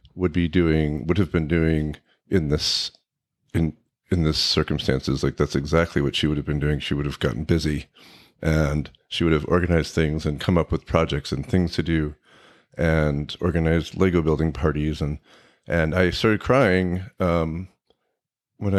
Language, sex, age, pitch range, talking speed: English, male, 40-59, 75-90 Hz, 170 wpm